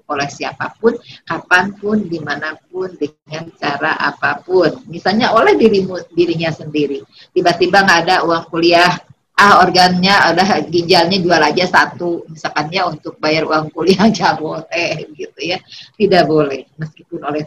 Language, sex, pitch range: Indonesian, female, 165-220 Hz